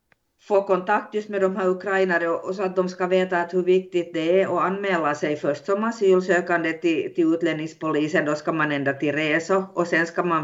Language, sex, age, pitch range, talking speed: Swedish, female, 50-69, 145-180 Hz, 215 wpm